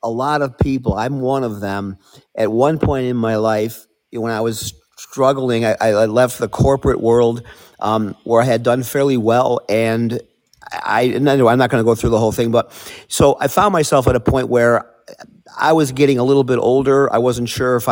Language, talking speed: English, 220 wpm